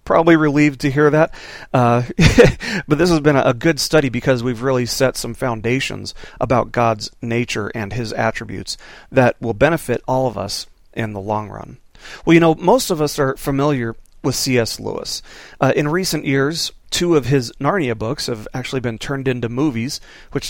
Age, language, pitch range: 40-59, English, 120-155 Hz